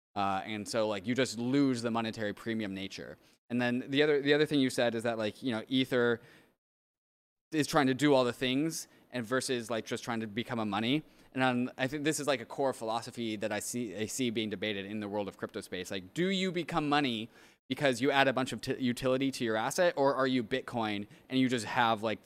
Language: English